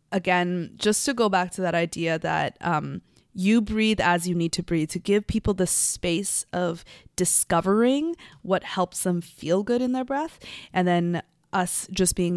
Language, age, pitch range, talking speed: English, 20-39, 175-205 Hz, 180 wpm